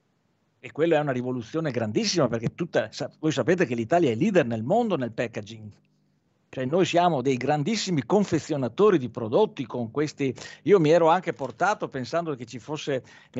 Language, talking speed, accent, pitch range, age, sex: Italian, 170 wpm, native, 130-170 Hz, 50-69, male